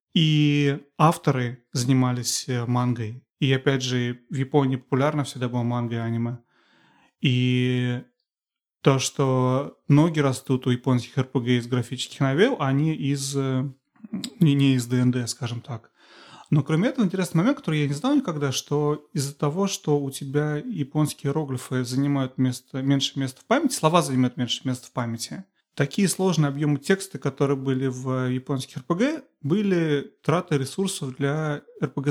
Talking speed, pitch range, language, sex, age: 145 wpm, 130-150 Hz, Russian, male, 30-49